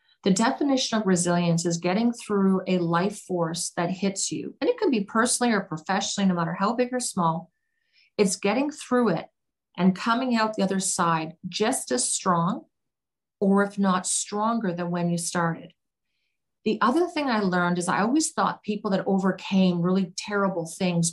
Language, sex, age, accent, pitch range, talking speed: English, female, 40-59, American, 175-220 Hz, 175 wpm